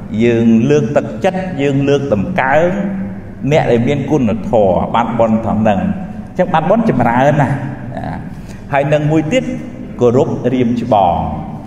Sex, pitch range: male, 115-160 Hz